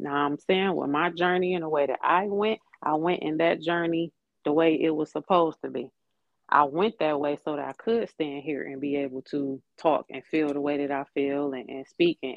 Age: 30-49